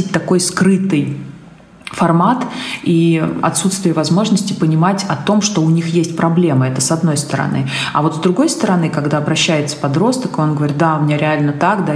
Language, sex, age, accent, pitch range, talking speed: Russian, female, 30-49, native, 150-175 Hz, 170 wpm